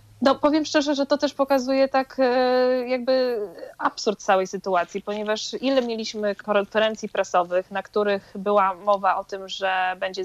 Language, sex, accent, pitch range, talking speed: Polish, female, native, 180-215 Hz, 145 wpm